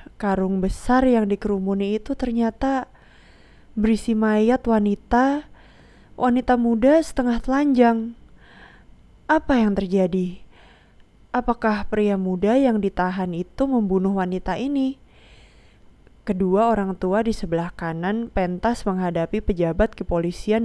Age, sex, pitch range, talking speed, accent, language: 20-39, female, 180-225 Hz, 100 wpm, native, Indonesian